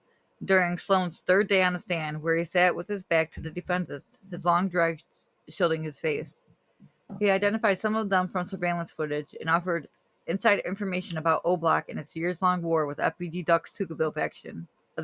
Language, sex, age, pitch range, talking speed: English, female, 20-39, 160-190 Hz, 190 wpm